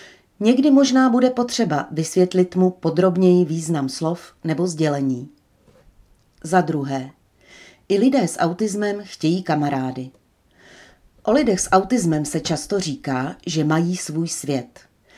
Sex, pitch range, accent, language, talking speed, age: female, 150-190 Hz, native, Czech, 120 wpm, 40-59